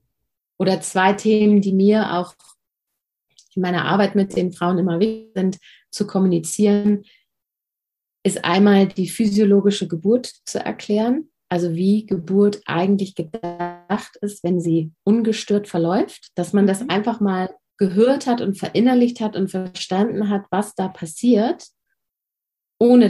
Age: 30-49